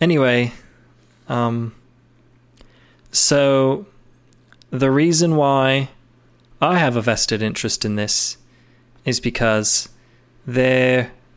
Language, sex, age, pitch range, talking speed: English, male, 20-39, 120-130 Hz, 85 wpm